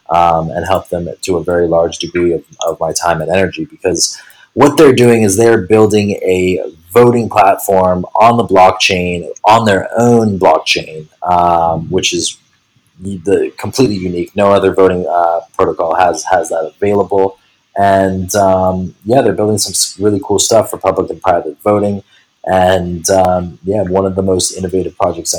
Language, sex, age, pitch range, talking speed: English, male, 20-39, 90-105 Hz, 165 wpm